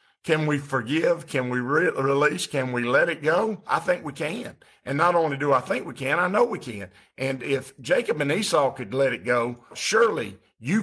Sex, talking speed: male, 210 wpm